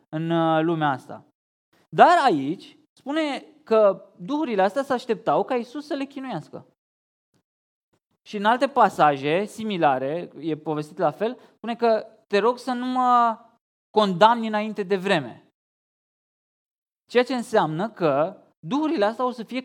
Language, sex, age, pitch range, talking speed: Romanian, male, 20-39, 150-230 Hz, 135 wpm